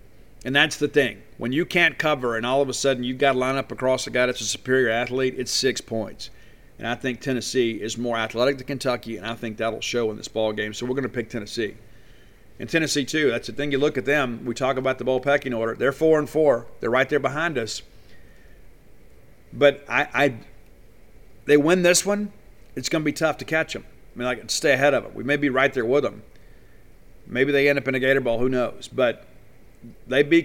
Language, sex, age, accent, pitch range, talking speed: English, male, 50-69, American, 120-145 Hz, 235 wpm